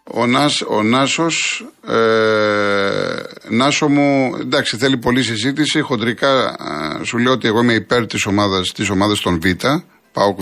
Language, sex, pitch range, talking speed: Greek, male, 100-135 Hz, 150 wpm